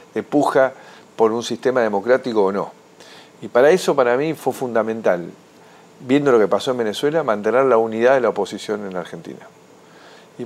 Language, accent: Spanish, Argentinian